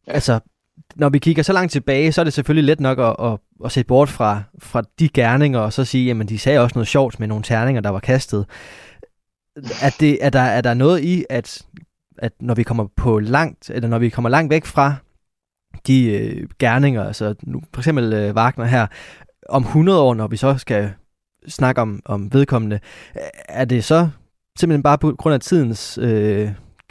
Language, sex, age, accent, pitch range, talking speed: Danish, male, 20-39, native, 110-140 Hz, 200 wpm